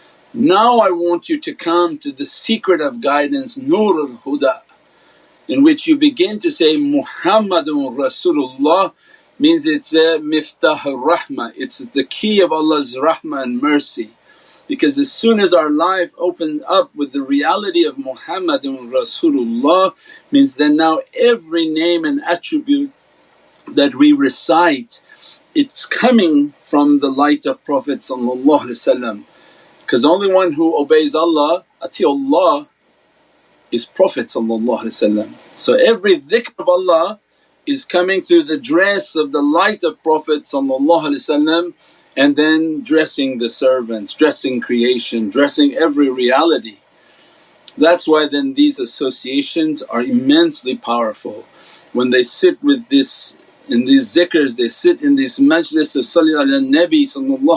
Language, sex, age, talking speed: English, male, 50-69, 130 wpm